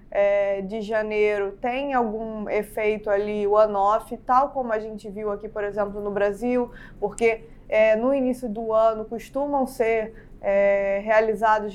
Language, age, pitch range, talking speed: Portuguese, 20-39, 210-255 Hz, 140 wpm